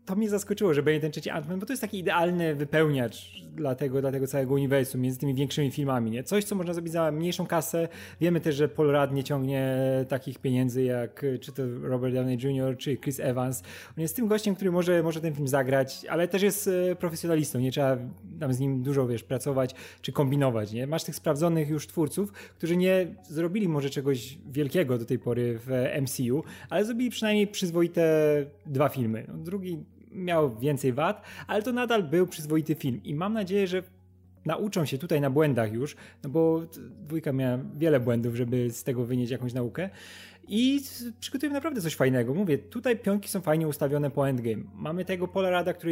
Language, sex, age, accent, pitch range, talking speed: Polish, male, 20-39, native, 130-180 Hz, 190 wpm